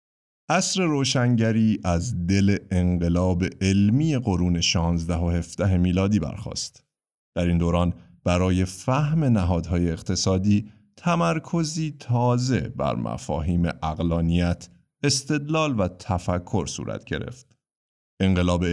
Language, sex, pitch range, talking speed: Persian, male, 85-125 Hz, 95 wpm